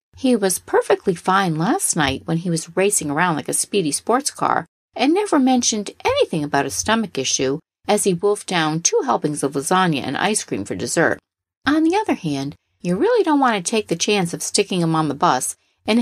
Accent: American